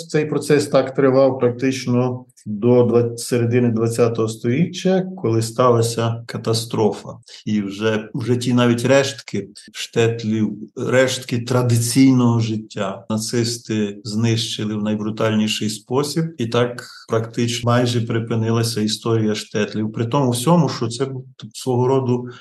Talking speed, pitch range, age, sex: 110 wpm, 115-130 Hz, 40-59, male